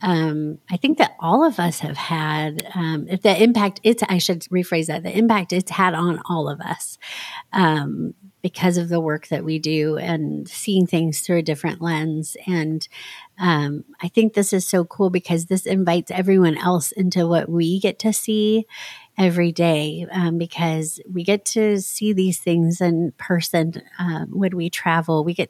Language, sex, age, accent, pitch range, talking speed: English, female, 30-49, American, 165-185 Hz, 185 wpm